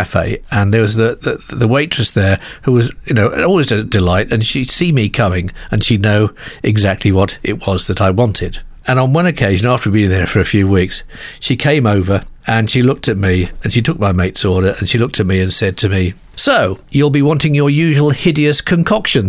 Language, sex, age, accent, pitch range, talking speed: English, male, 50-69, British, 100-130 Hz, 225 wpm